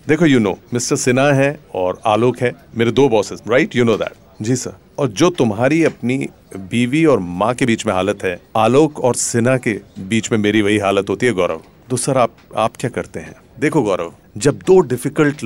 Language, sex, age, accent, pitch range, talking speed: Hindi, male, 40-59, native, 105-130 Hz, 210 wpm